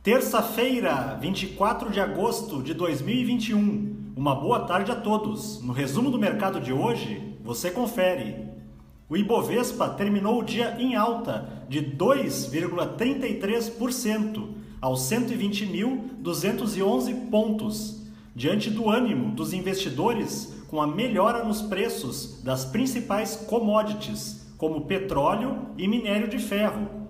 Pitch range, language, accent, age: 185-230 Hz, Portuguese, Brazilian, 40-59